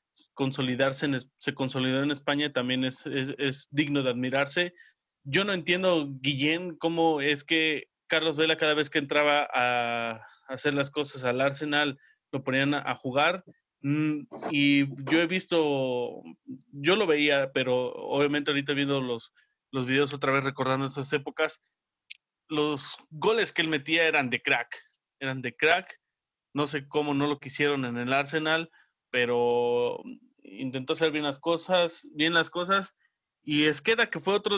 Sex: male